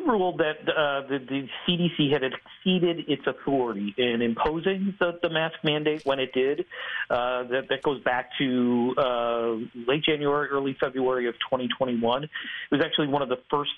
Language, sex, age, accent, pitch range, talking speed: English, male, 40-59, American, 120-150 Hz, 170 wpm